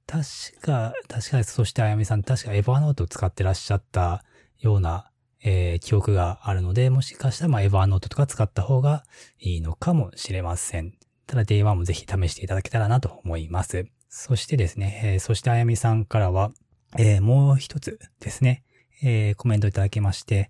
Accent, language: native, Japanese